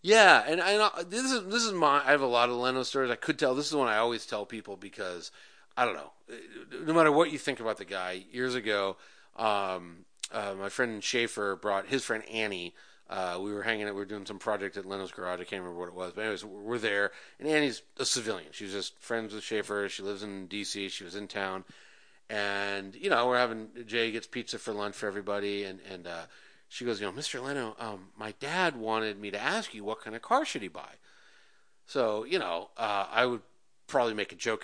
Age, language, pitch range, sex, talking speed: 40-59, English, 100-155 Hz, male, 235 wpm